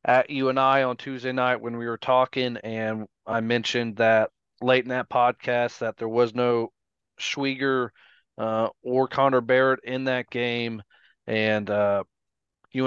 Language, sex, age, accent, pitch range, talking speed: English, male, 30-49, American, 110-125 Hz, 155 wpm